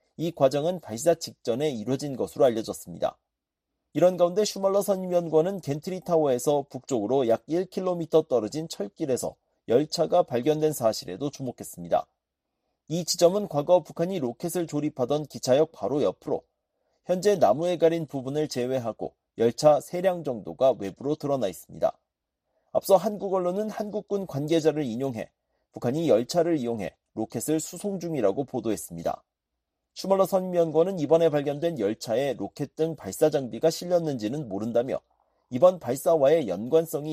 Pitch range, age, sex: 130-175 Hz, 40-59, male